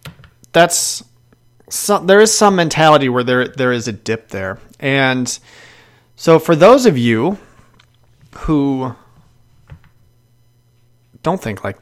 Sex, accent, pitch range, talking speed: male, American, 120-150 Hz, 115 wpm